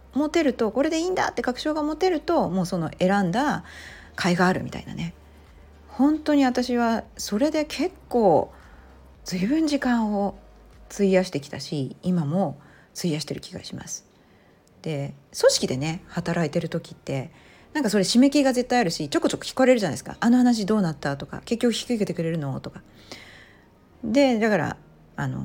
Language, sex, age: Japanese, female, 40-59